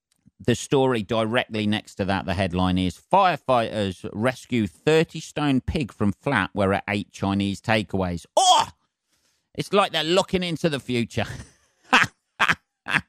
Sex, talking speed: male, 135 wpm